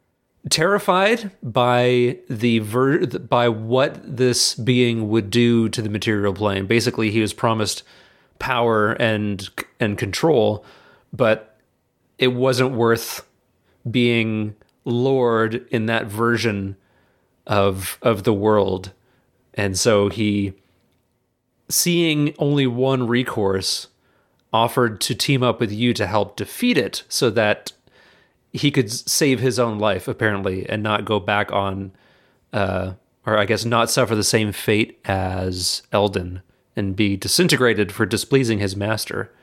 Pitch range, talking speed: 105-125 Hz, 130 wpm